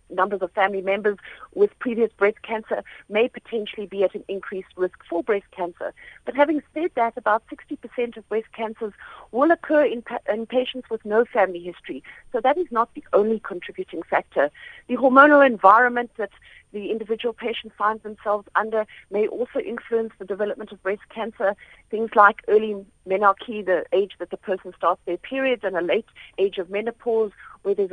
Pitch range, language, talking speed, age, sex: 195-235 Hz, English, 175 wpm, 50-69, female